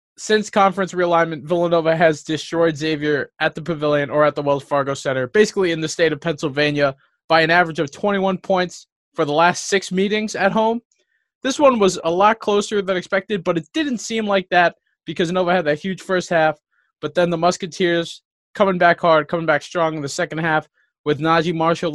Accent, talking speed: American, 200 wpm